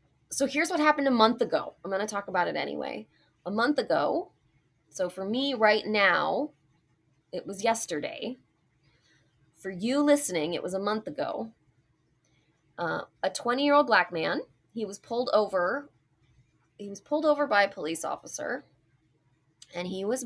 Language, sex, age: English, female, 20-39